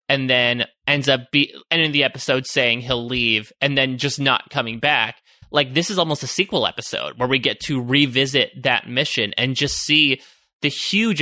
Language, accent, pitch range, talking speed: English, American, 125-150 Hz, 185 wpm